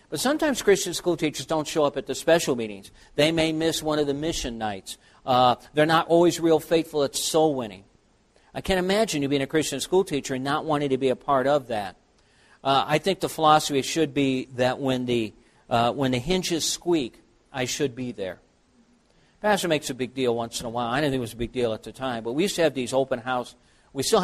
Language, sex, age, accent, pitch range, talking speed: English, male, 50-69, American, 115-150 Hz, 235 wpm